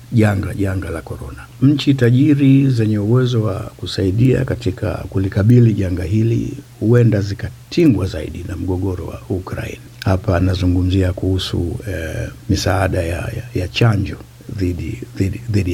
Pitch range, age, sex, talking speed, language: 95-120 Hz, 60-79, male, 115 wpm, Swahili